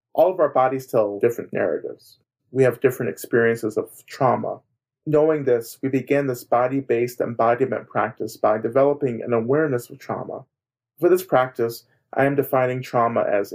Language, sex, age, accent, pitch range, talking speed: English, male, 40-59, American, 115-130 Hz, 155 wpm